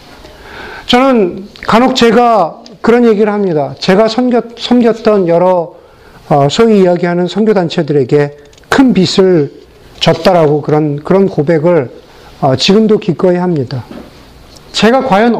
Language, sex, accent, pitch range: Korean, male, native, 165-225 Hz